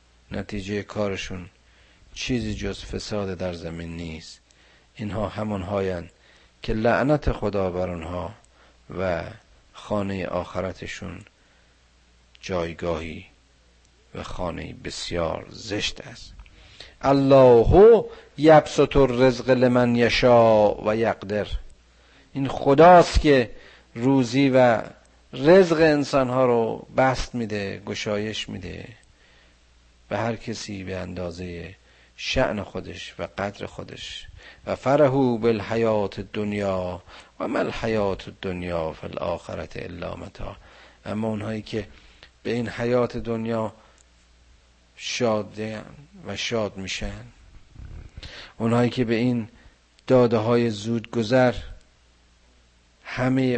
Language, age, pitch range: Persian, 50-69, 70-115 Hz